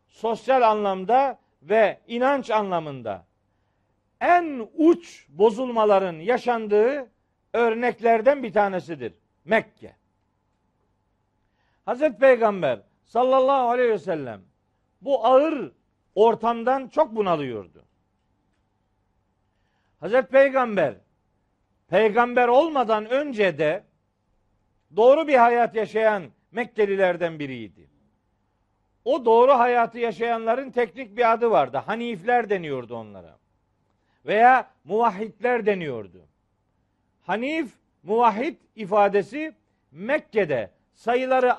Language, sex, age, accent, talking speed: Turkish, male, 50-69, native, 80 wpm